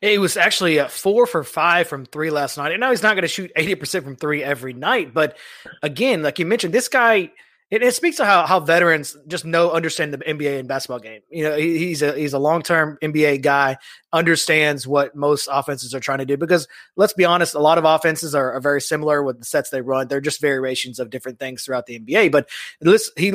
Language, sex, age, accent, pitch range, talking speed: English, male, 20-39, American, 145-185 Hz, 235 wpm